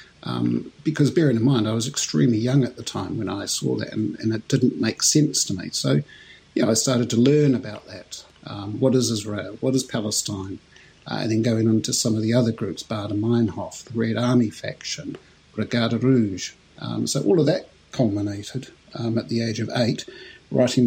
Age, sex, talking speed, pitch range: 50-69, male, 205 wpm, 110-130 Hz